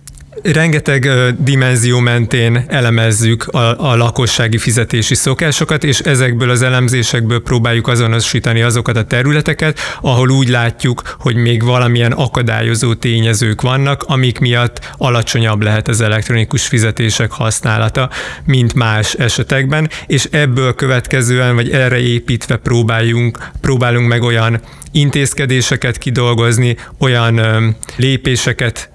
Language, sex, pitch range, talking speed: Hungarian, male, 115-130 Hz, 105 wpm